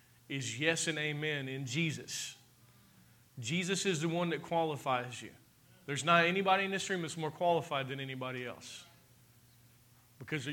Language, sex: English, male